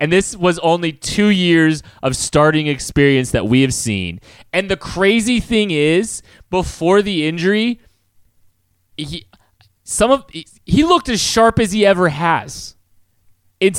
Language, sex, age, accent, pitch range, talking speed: English, male, 30-49, American, 125-195 Hz, 145 wpm